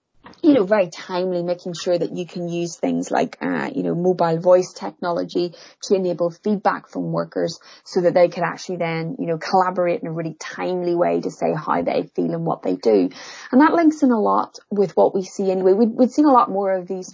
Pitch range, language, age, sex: 165-190 Hz, English, 30-49, female